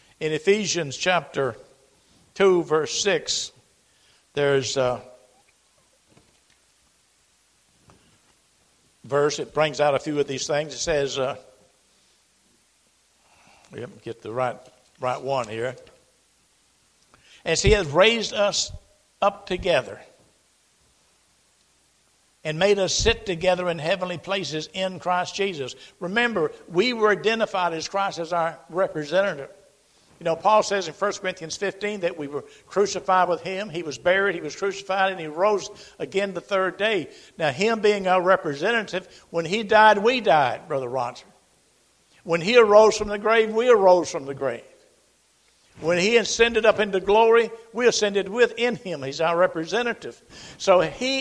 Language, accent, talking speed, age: English, American, 140 wpm, 60-79